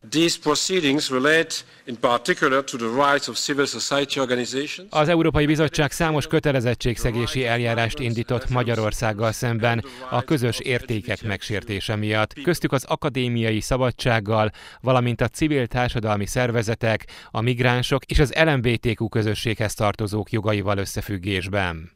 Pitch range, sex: 110-135 Hz, male